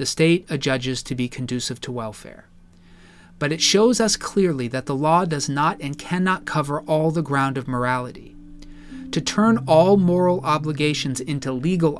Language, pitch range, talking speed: English, 135-170 Hz, 165 wpm